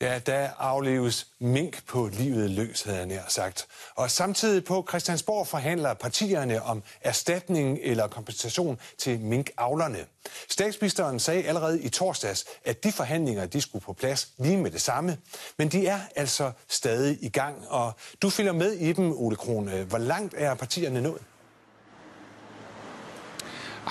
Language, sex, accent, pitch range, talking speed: Danish, male, native, 105-145 Hz, 150 wpm